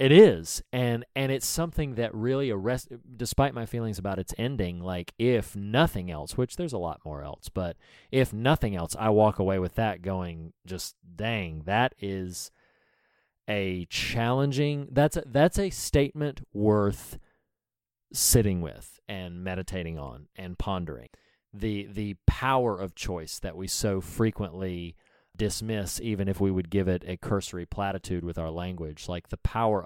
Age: 30-49